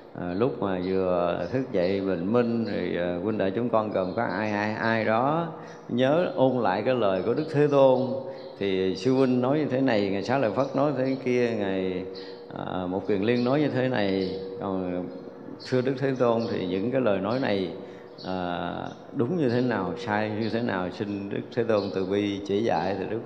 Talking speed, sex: 210 wpm, male